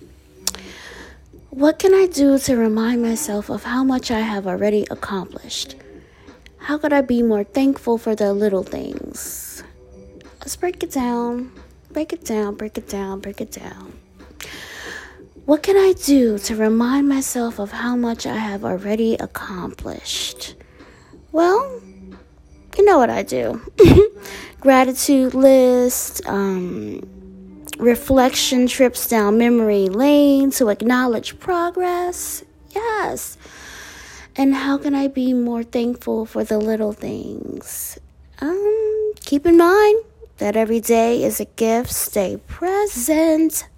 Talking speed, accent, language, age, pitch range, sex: 125 wpm, American, English, 20-39, 215-300 Hz, female